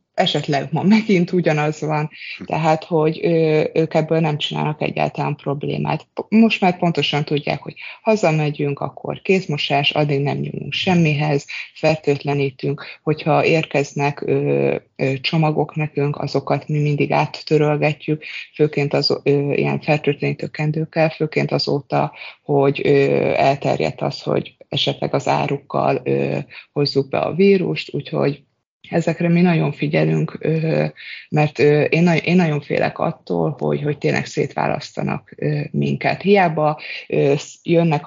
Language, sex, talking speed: Hungarian, female, 120 wpm